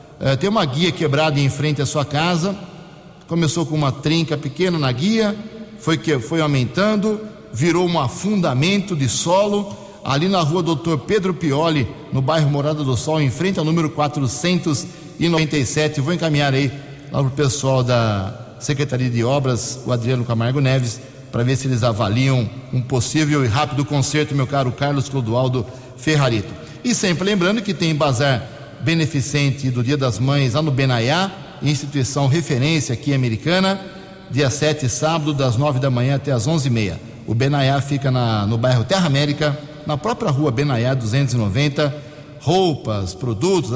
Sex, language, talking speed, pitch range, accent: male, Portuguese, 155 wpm, 130-165 Hz, Brazilian